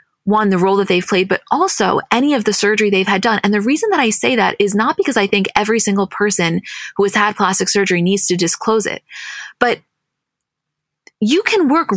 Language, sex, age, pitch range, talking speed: English, female, 20-39, 195-245 Hz, 215 wpm